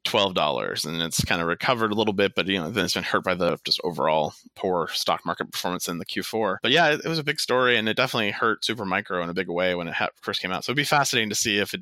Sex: male